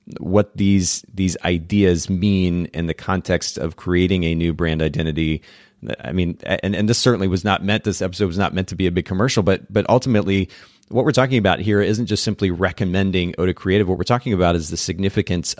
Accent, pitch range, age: American, 85-105 Hz, 30-49